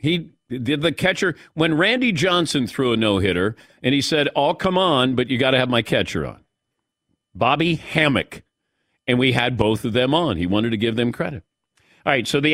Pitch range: 115-165 Hz